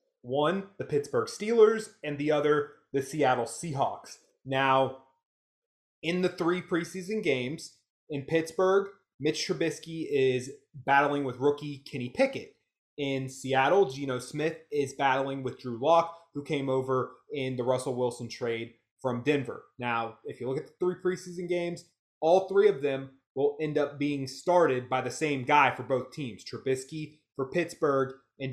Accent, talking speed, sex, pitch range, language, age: American, 155 wpm, male, 135-160 Hz, English, 30-49